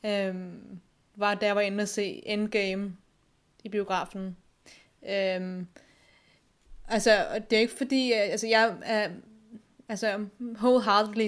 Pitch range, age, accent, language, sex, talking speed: 200-230 Hz, 20-39, native, Danish, female, 120 wpm